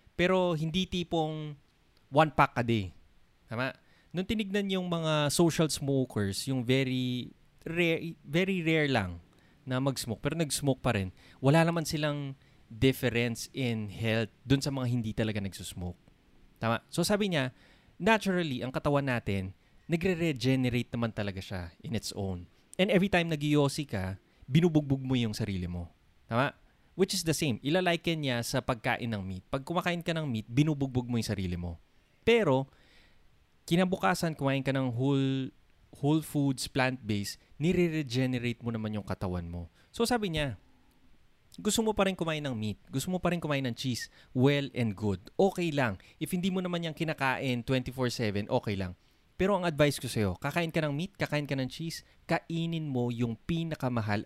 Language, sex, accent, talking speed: Filipino, male, native, 165 wpm